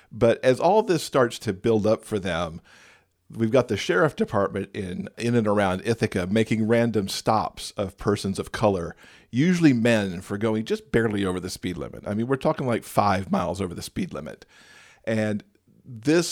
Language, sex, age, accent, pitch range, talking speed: English, male, 40-59, American, 95-115 Hz, 185 wpm